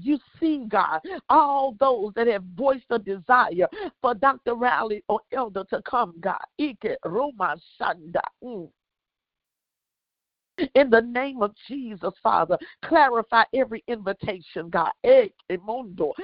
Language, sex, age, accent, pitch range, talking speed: English, female, 50-69, American, 205-295 Hz, 110 wpm